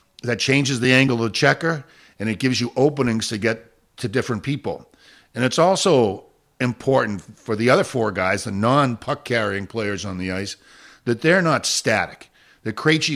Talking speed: 180 wpm